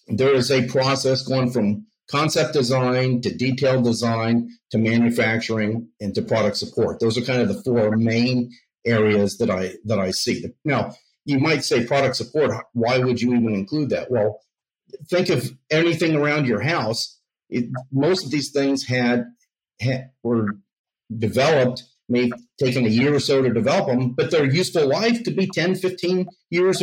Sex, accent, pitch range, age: male, American, 115-145 Hz, 50-69